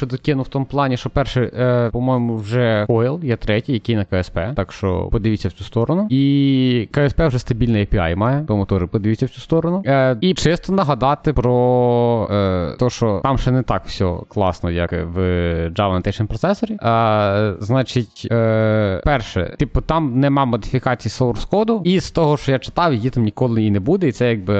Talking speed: 180 wpm